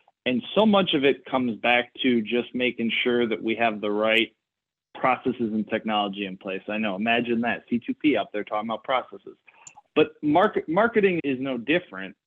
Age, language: 20-39, English